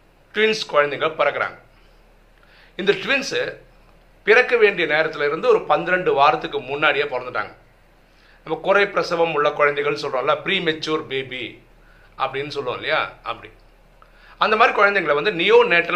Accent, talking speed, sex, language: native, 115 wpm, male, Tamil